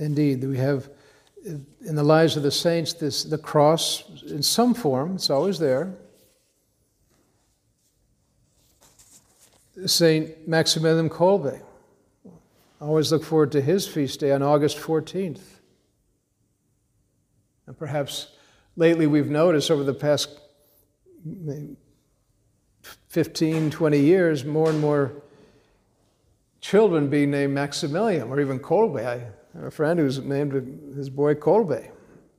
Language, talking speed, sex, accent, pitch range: English, 110 wpm, male, American, 135-160 Hz